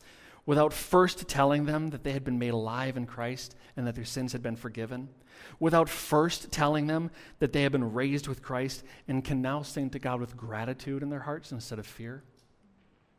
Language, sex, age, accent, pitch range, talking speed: English, male, 40-59, American, 130-165 Hz, 200 wpm